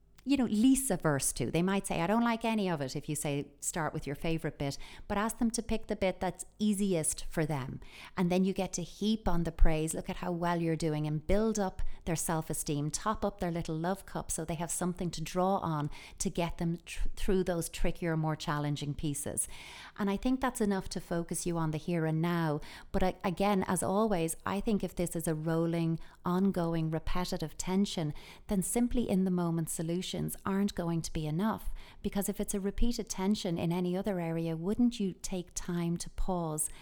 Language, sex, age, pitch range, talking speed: English, female, 30-49, 160-190 Hz, 210 wpm